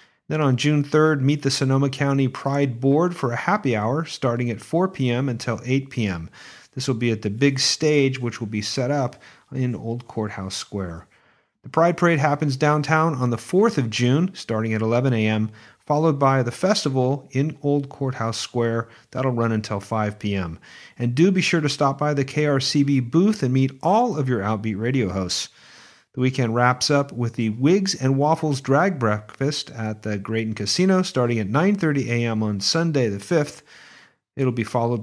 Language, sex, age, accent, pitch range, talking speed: English, male, 40-59, American, 115-155 Hz, 185 wpm